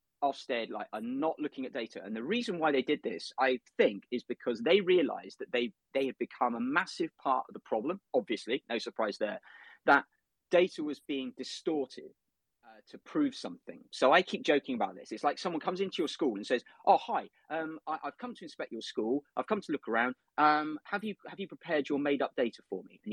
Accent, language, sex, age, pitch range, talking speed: British, English, male, 30-49, 130-220 Hz, 225 wpm